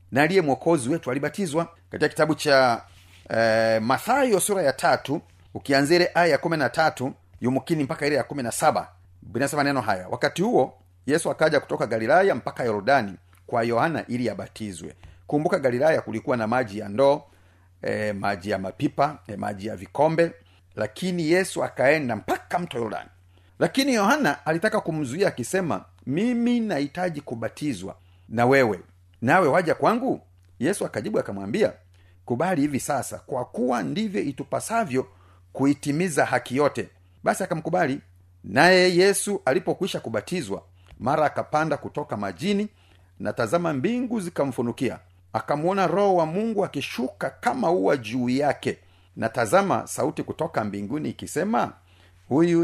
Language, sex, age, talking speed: Swahili, male, 40-59, 130 wpm